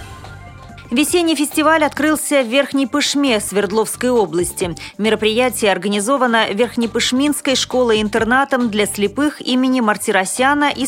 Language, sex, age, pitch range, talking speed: Russian, female, 30-49, 200-250 Hz, 95 wpm